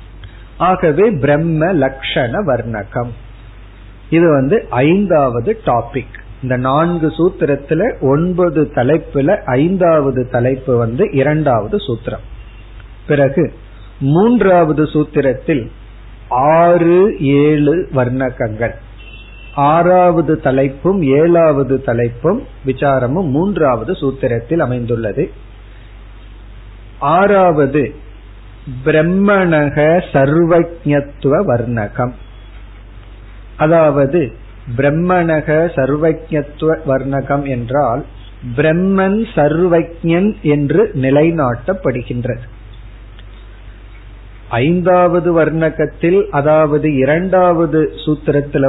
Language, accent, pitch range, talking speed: Tamil, native, 120-165 Hz, 50 wpm